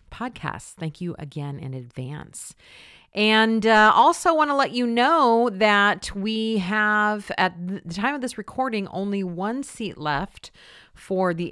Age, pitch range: 40-59, 150-210 Hz